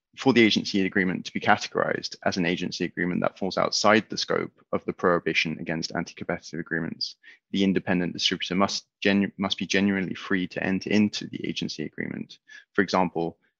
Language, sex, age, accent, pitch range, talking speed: English, male, 20-39, British, 90-100 Hz, 170 wpm